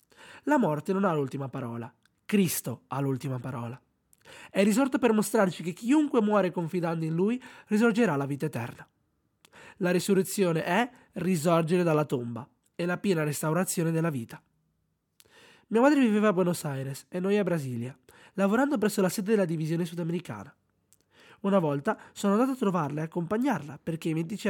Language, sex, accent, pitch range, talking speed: Italian, male, native, 145-200 Hz, 155 wpm